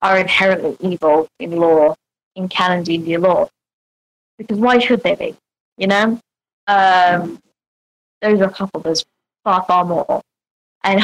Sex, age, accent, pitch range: female, 20-39, British, 175-200 Hz